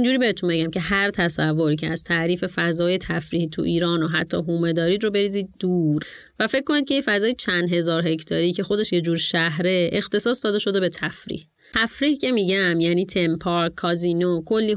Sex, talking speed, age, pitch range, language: female, 185 wpm, 30-49, 170-205 Hz, Persian